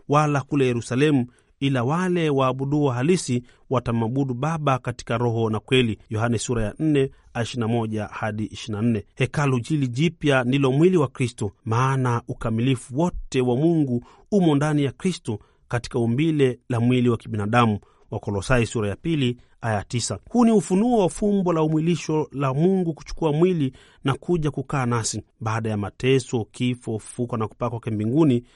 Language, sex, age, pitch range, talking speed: Swahili, male, 40-59, 115-145 Hz, 150 wpm